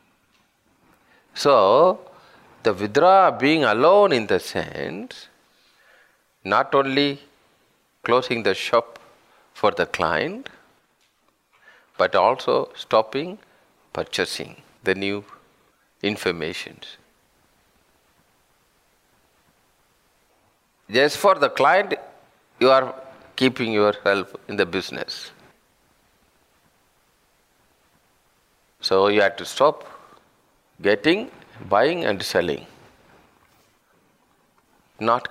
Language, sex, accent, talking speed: English, male, Indian, 75 wpm